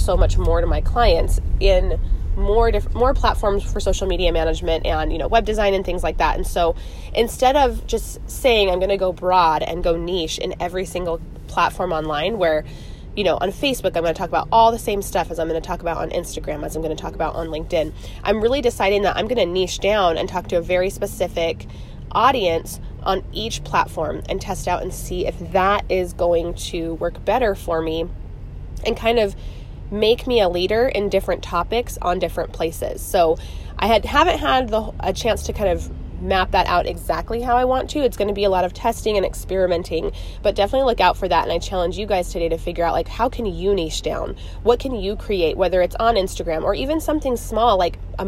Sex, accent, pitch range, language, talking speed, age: female, American, 165-220 Hz, English, 225 wpm, 20-39